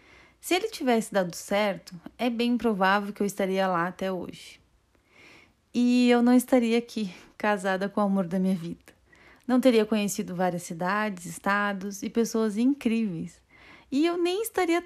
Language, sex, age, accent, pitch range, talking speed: Portuguese, female, 30-49, Brazilian, 200-255 Hz, 160 wpm